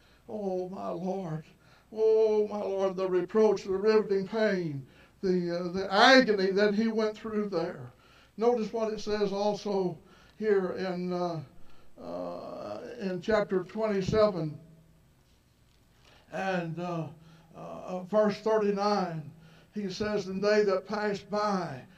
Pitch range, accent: 175-210 Hz, American